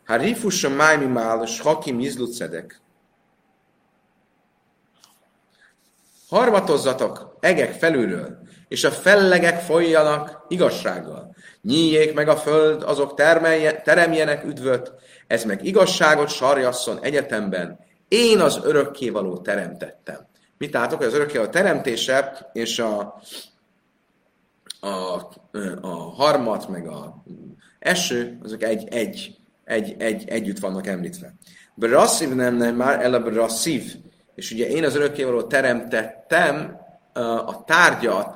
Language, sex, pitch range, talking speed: Hungarian, male, 120-160 Hz, 100 wpm